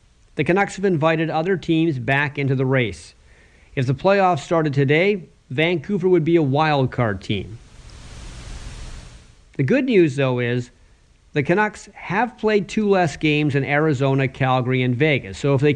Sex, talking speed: male, 160 wpm